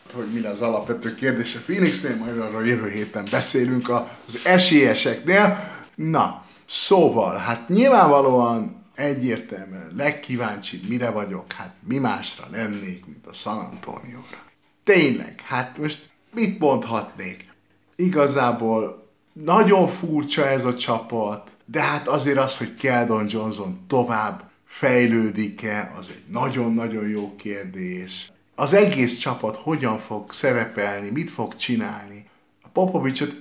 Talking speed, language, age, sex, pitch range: 120 wpm, Hungarian, 50-69, male, 110-145 Hz